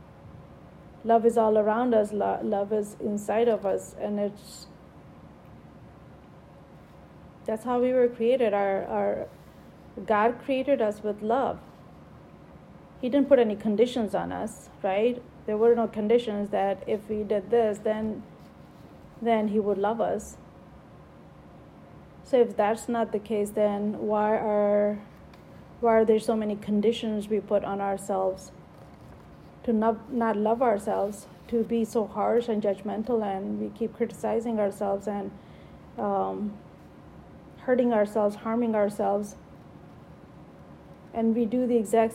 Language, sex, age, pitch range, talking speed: English, female, 30-49, 205-230 Hz, 130 wpm